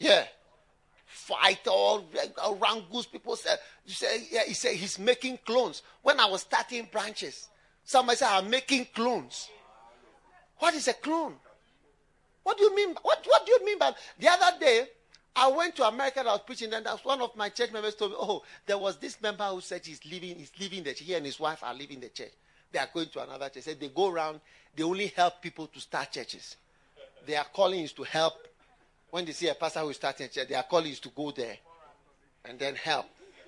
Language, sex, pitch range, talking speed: English, male, 155-255 Hz, 220 wpm